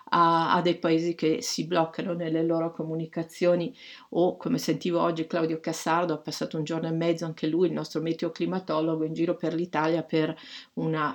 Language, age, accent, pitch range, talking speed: Italian, 50-69, native, 160-195 Hz, 180 wpm